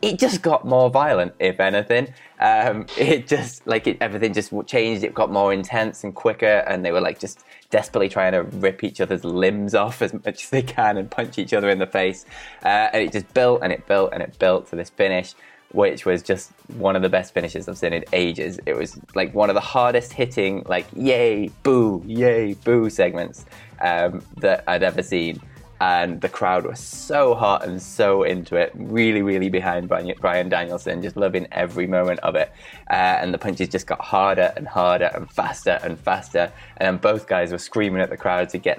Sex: male